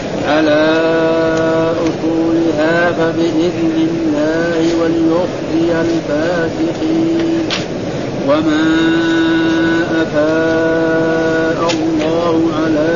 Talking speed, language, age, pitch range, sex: 45 wpm, Arabic, 50-69, 160-165 Hz, male